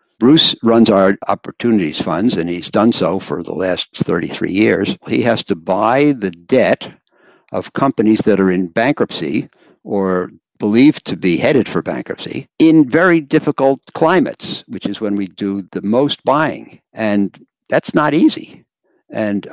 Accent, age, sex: American, 60-79, male